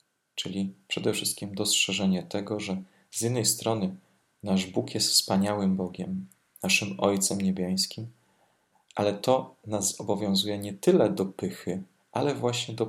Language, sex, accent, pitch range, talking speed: Polish, male, native, 95-110 Hz, 130 wpm